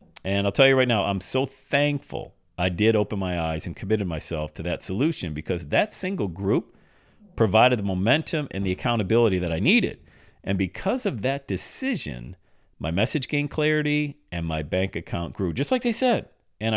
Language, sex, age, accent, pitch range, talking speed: English, male, 40-59, American, 90-125 Hz, 185 wpm